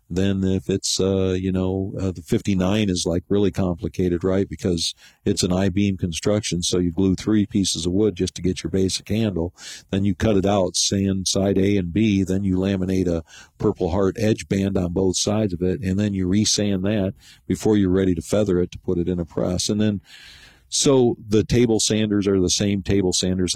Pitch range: 90-100 Hz